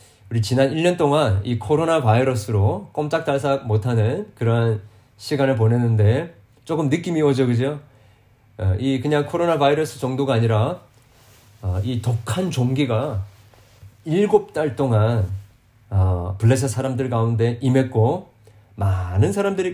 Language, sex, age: Korean, male, 30-49